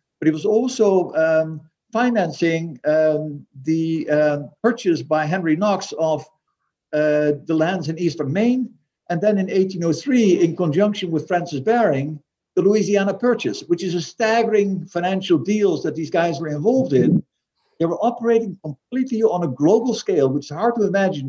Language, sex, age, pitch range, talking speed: English, male, 60-79, 155-200 Hz, 160 wpm